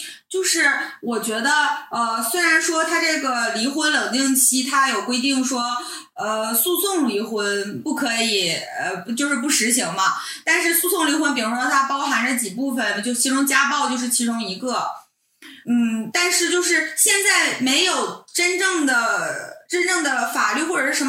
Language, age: Chinese, 20-39